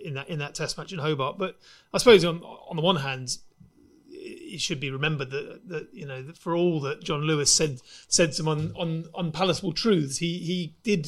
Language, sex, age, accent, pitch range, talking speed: English, male, 30-49, British, 150-180 Hz, 210 wpm